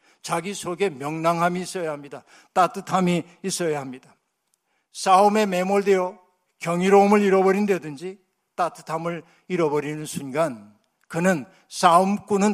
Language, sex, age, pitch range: Korean, male, 60-79, 165-200 Hz